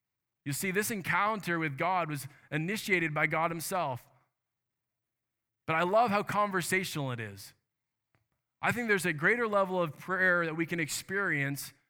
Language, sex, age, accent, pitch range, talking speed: English, male, 20-39, American, 130-175 Hz, 150 wpm